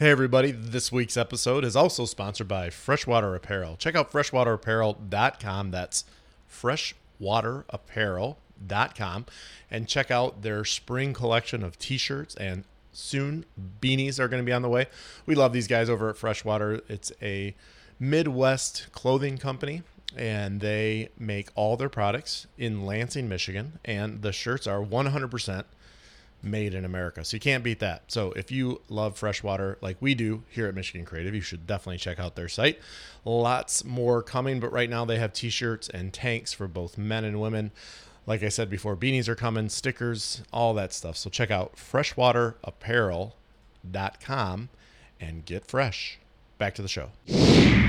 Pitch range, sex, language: 100-125 Hz, male, English